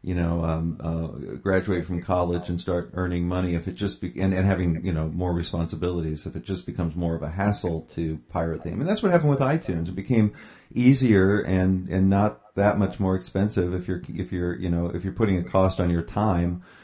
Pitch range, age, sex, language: 85-95 Hz, 40-59, male, English